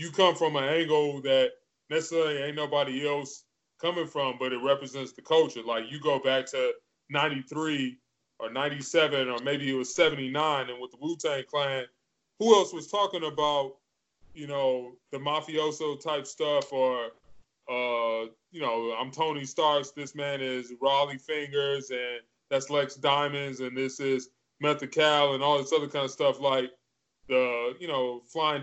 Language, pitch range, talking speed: English, 130-155 Hz, 165 wpm